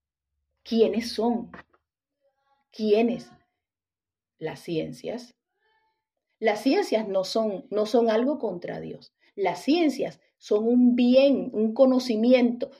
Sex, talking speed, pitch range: female, 95 wpm, 195-245 Hz